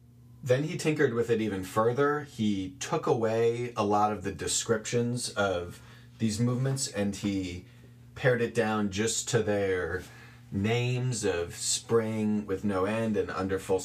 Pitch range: 100-120 Hz